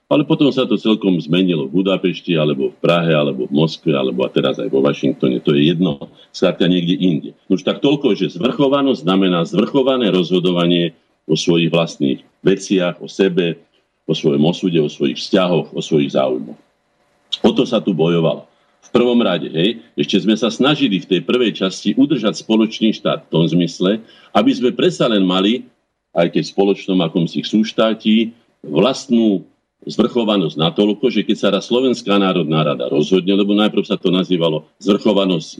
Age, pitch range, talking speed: 50-69, 85-105 Hz, 170 wpm